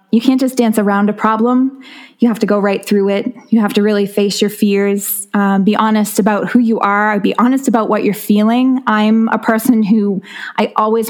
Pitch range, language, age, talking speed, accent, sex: 205-225 Hz, English, 20-39, 215 wpm, American, female